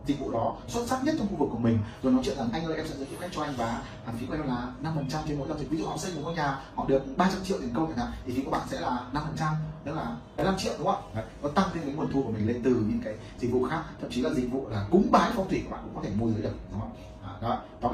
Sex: male